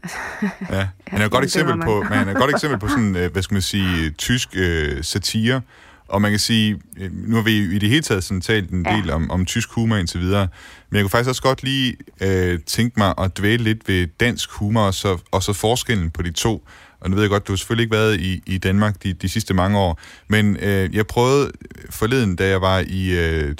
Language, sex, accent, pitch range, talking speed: Danish, male, native, 90-110 Hz, 225 wpm